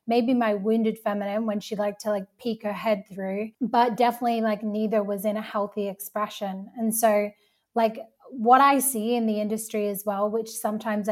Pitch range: 210-230 Hz